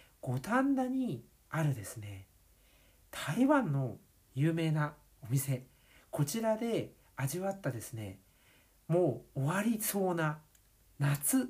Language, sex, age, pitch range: Japanese, male, 60-79, 130-215 Hz